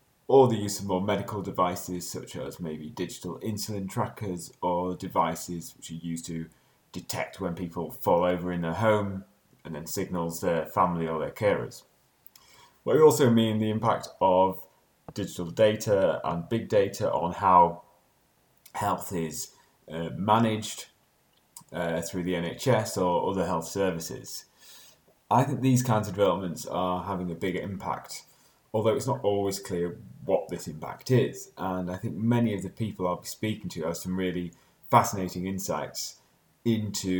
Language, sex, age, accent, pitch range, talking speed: English, male, 30-49, British, 90-110 Hz, 160 wpm